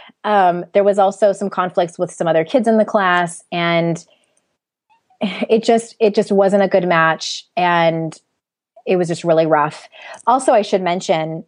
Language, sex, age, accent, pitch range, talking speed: English, female, 20-39, American, 160-210 Hz, 165 wpm